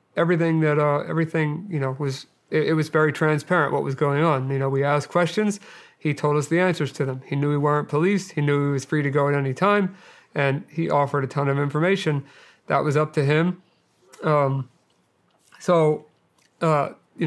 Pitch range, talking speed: 140-160 Hz, 205 wpm